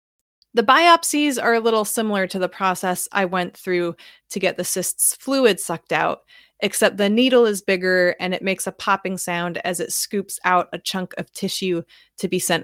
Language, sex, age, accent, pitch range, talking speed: English, female, 30-49, American, 175-220 Hz, 195 wpm